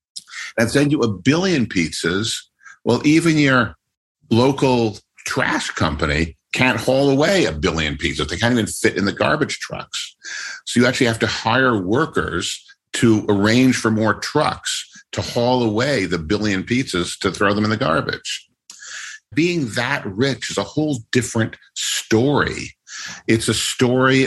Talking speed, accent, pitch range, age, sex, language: 150 wpm, American, 100-125 Hz, 50-69, male, English